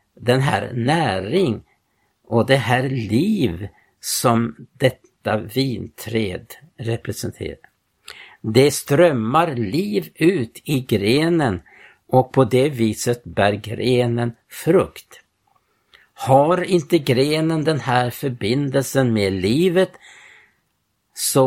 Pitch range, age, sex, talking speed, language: 115-150 Hz, 60-79, male, 90 wpm, Swedish